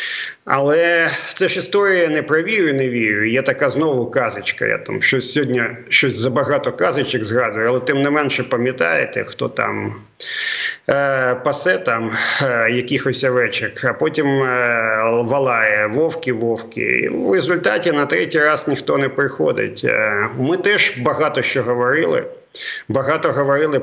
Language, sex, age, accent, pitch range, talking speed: Ukrainian, male, 50-69, native, 125-165 Hz, 125 wpm